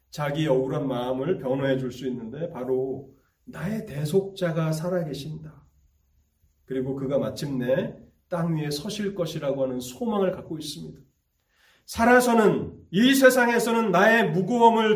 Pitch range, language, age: 125-185 Hz, Korean, 30-49